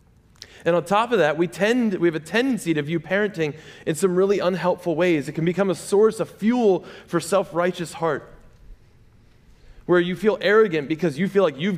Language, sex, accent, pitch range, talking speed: English, male, American, 120-165 Hz, 195 wpm